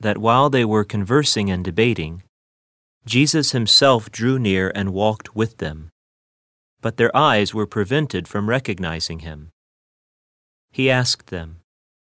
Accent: American